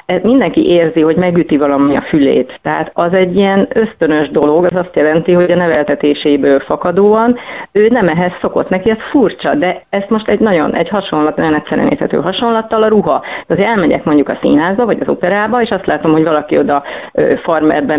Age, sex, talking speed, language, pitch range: 40-59, female, 185 wpm, Hungarian, 155-195 Hz